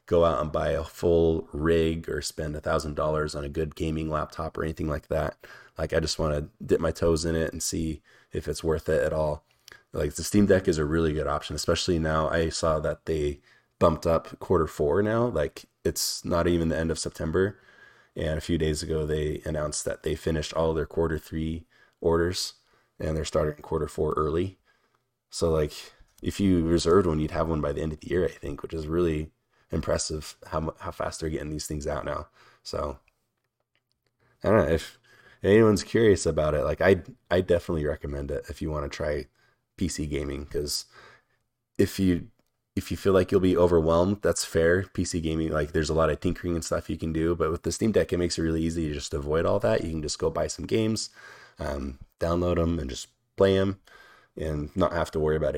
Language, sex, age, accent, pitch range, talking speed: English, male, 20-39, American, 75-85 Hz, 215 wpm